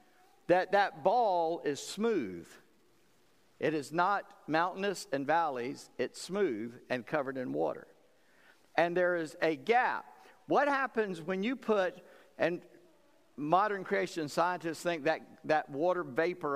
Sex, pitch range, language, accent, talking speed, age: male, 150-195 Hz, English, American, 130 wpm, 50-69